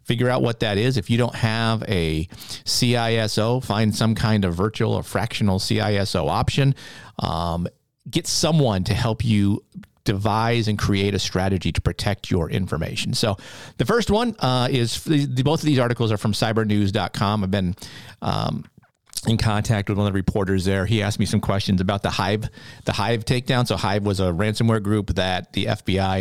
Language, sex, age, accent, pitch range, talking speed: English, male, 40-59, American, 95-125 Hz, 180 wpm